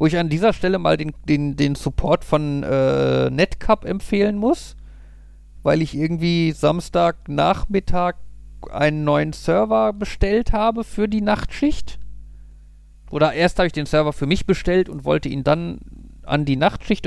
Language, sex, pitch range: German, male, 145-205 Hz